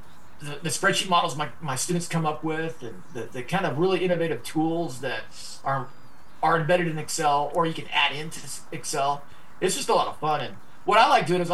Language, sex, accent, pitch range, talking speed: English, male, American, 140-180 Hz, 220 wpm